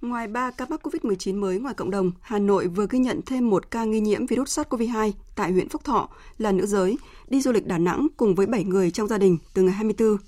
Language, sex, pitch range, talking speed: Vietnamese, female, 185-250 Hz, 250 wpm